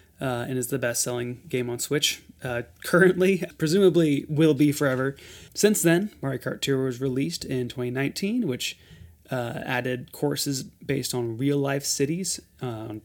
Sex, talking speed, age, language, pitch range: male, 145 wpm, 30-49, English, 125-155 Hz